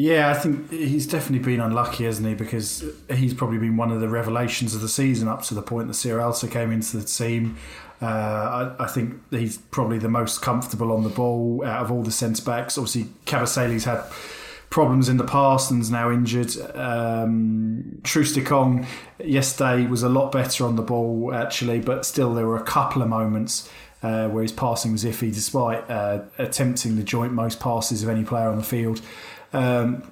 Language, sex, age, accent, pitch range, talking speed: English, male, 20-39, British, 115-130 Hz, 190 wpm